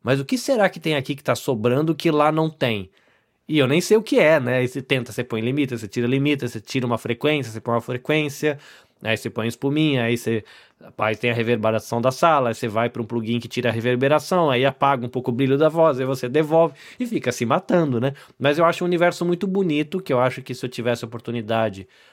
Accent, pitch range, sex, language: Brazilian, 115-155 Hz, male, Portuguese